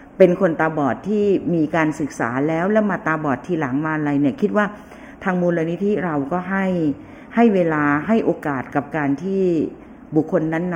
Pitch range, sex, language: 145-195 Hz, female, Thai